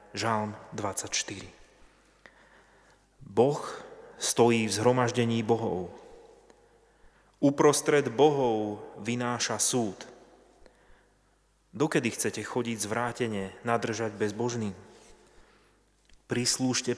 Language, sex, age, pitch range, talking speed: Slovak, male, 30-49, 105-130 Hz, 65 wpm